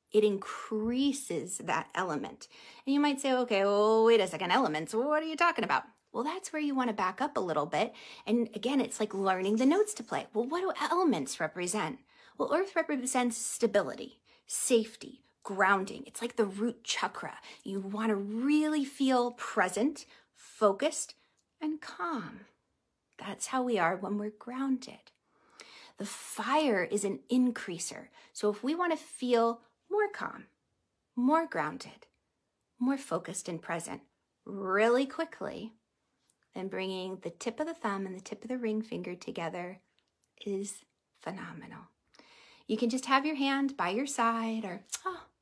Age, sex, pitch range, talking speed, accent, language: 30-49, female, 205-290 Hz, 155 wpm, American, English